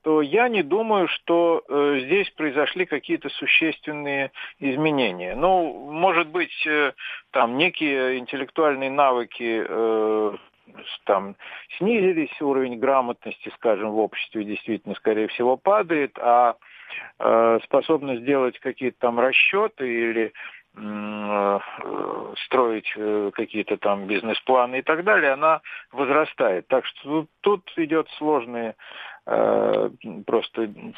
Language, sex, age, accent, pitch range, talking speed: Russian, male, 50-69, native, 120-160 Hz, 105 wpm